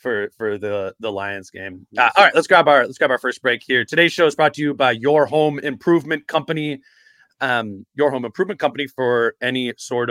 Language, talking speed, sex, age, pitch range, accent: English, 220 wpm, male, 30-49, 115-140 Hz, American